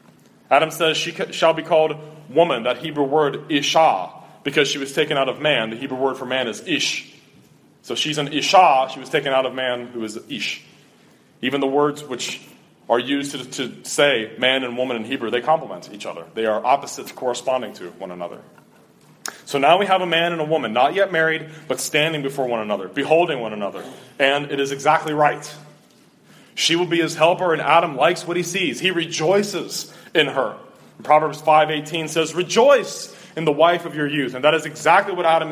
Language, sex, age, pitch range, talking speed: English, male, 30-49, 130-165 Hz, 205 wpm